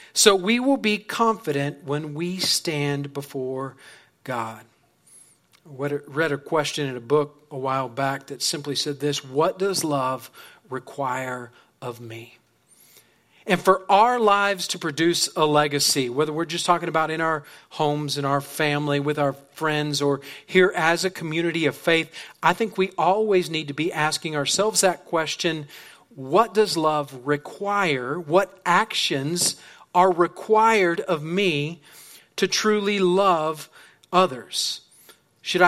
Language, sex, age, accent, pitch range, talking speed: English, male, 40-59, American, 145-185 Hz, 145 wpm